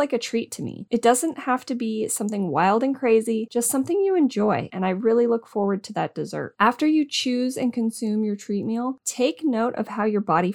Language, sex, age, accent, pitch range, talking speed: English, female, 30-49, American, 205-250 Hz, 230 wpm